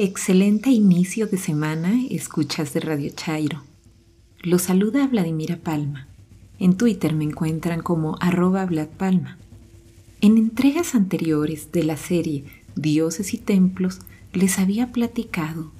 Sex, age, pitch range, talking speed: female, 40-59, 155-210 Hz, 115 wpm